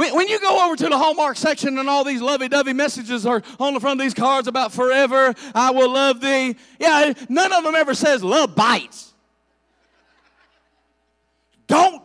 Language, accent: English, American